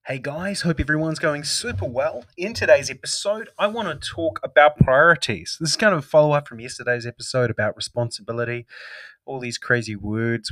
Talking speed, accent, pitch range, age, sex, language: 175 wpm, Australian, 115-150 Hz, 20-39, male, English